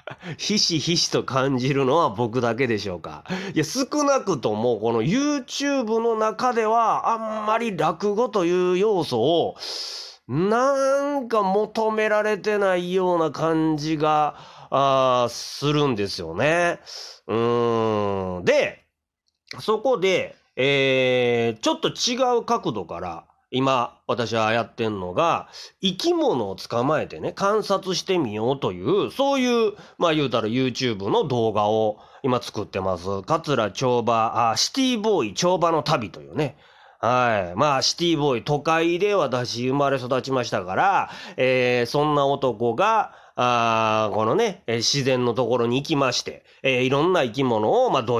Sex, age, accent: male, 30-49, native